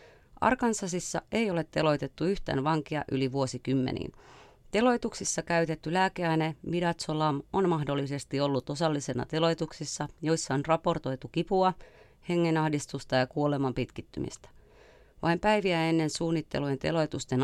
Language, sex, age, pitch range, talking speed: Finnish, female, 30-49, 135-165 Hz, 105 wpm